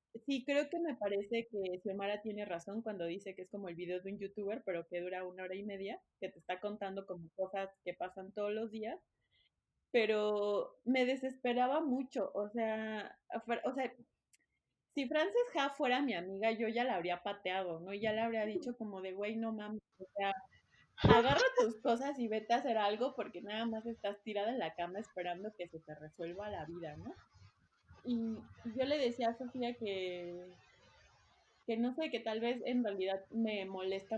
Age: 30-49